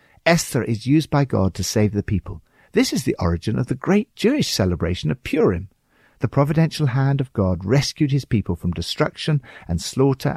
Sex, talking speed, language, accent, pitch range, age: male, 185 wpm, English, British, 95-150 Hz, 60-79